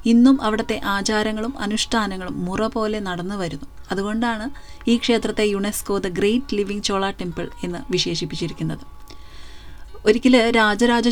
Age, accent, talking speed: 30-49, native, 115 wpm